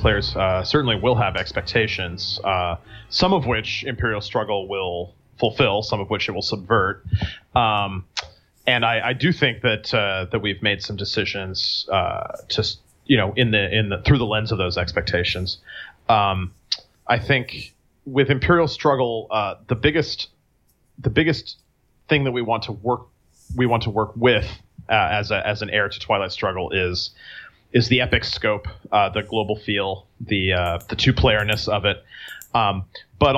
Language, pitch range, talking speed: English, 95-115 Hz, 175 wpm